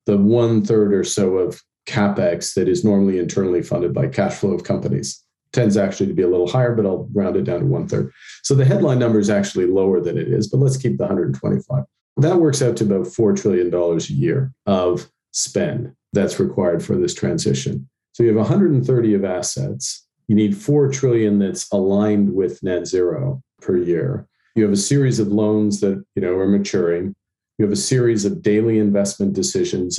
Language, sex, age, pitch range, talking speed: English, male, 50-69, 95-115 Hz, 195 wpm